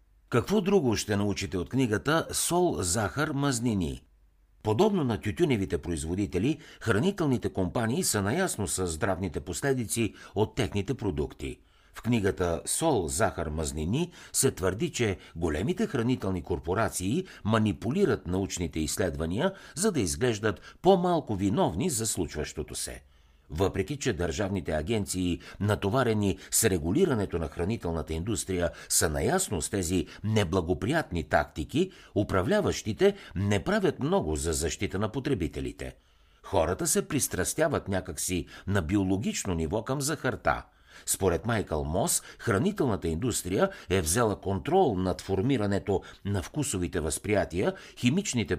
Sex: male